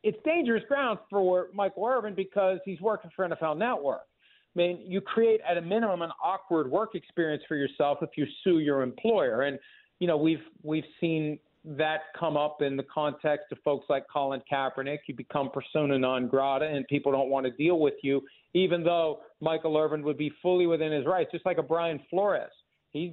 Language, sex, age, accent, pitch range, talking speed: English, male, 50-69, American, 145-180 Hz, 195 wpm